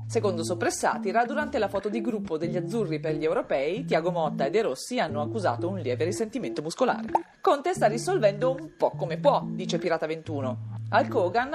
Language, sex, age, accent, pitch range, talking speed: Italian, female, 40-59, native, 160-220 Hz, 175 wpm